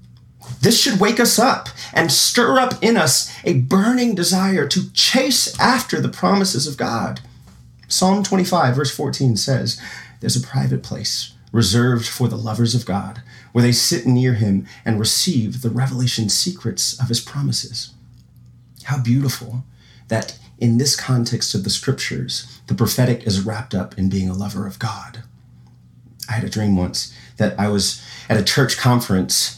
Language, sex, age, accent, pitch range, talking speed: English, male, 30-49, American, 110-140 Hz, 160 wpm